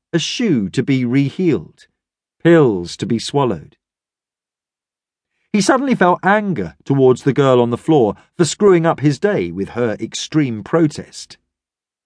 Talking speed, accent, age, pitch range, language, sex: 140 wpm, British, 40-59, 115-175 Hz, English, male